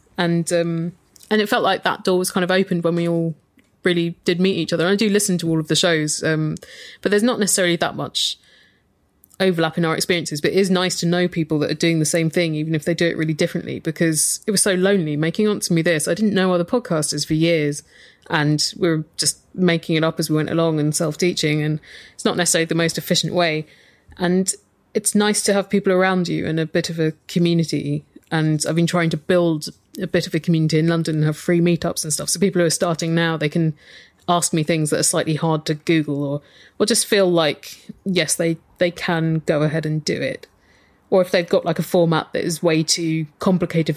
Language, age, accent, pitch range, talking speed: English, 20-39, British, 160-185 Hz, 235 wpm